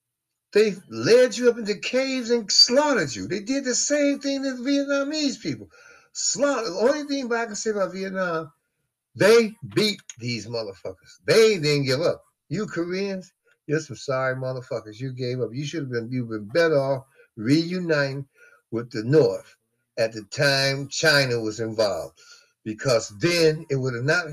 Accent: American